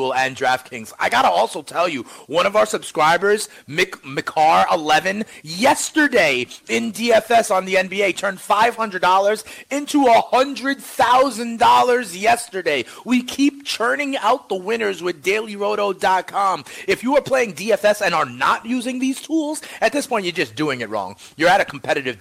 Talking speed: 150 wpm